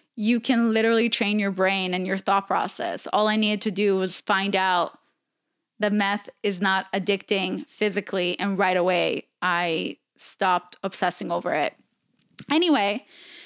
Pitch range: 205-280 Hz